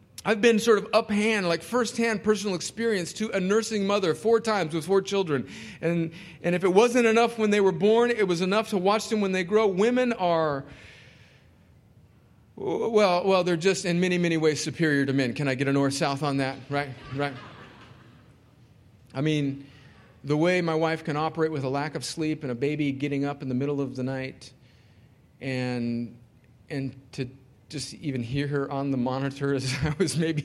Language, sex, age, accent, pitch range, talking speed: English, male, 40-59, American, 125-180 Hz, 195 wpm